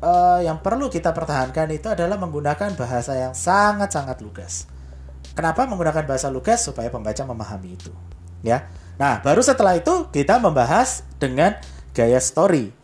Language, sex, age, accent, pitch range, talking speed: Indonesian, male, 30-49, native, 110-165 Hz, 140 wpm